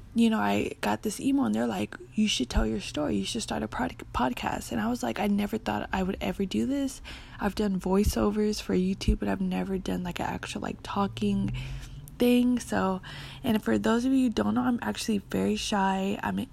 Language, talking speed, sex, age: English, 225 wpm, female, 20-39